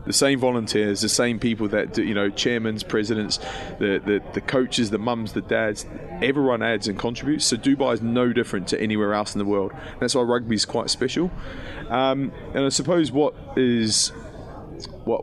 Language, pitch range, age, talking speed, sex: English, 100-120 Hz, 20-39, 195 wpm, male